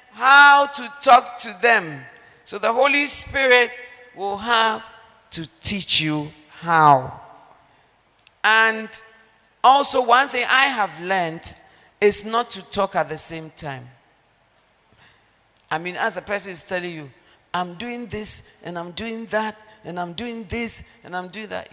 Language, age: English, 50-69